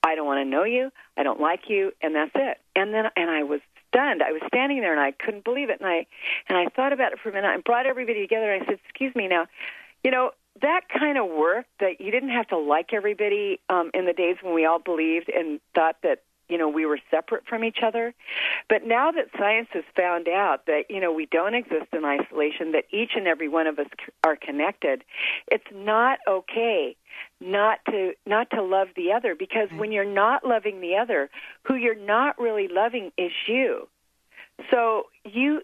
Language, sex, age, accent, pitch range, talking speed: English, female, 50-69, American, 175-250 Hz, 220 wpm